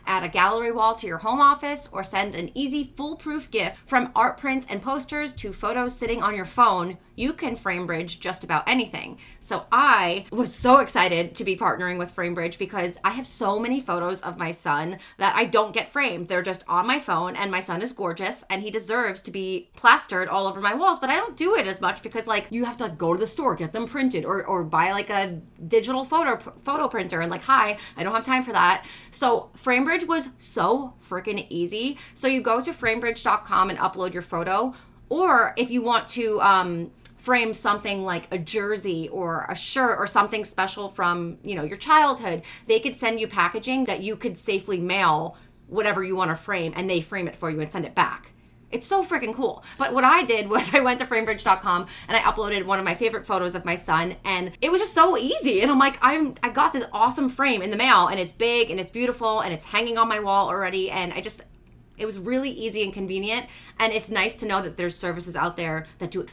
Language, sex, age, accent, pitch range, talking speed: English, female, 30-49, American, 180-245 Hz, 225 wpm